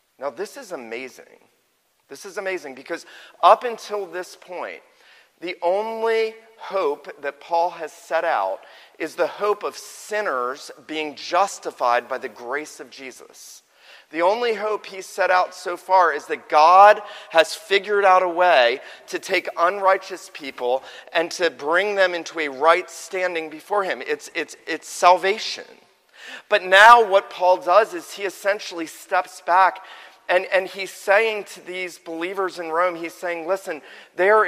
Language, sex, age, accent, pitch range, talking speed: English, male, 40-59, American, 165-205 Hz, 155 wpm